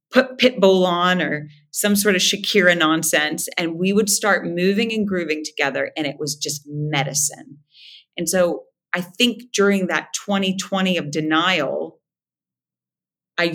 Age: 30-49